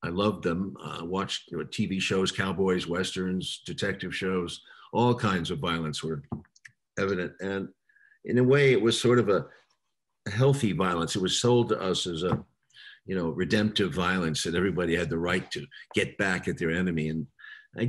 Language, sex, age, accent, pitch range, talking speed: English, male, 50-69, American, 90-115 Hz, 180 wpm